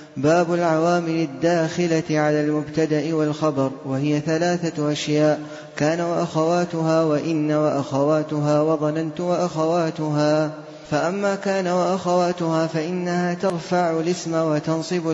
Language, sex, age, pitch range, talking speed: Arabic, male, 20-39, 150-175 Hz, 85 wpm